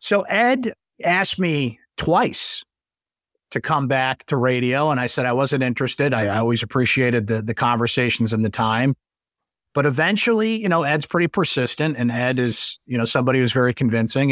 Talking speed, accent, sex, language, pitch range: 175 wpm, American, male, English, 120-145 Hz